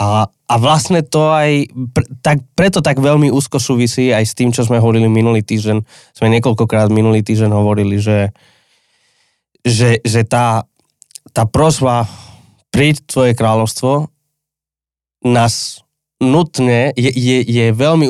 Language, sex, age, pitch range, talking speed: Slovak, male, 20-39, 110-145 Hz, 135 wpm